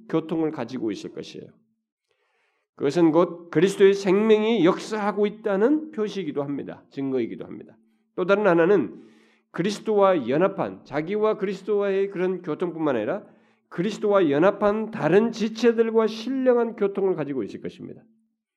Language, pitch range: Korean, 165-230 Hz